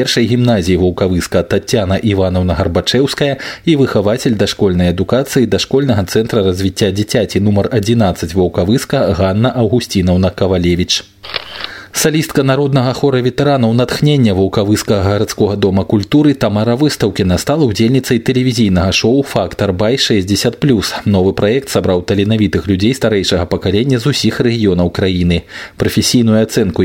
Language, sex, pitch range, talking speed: Russian, male, 95-125 Hz, 115 wpm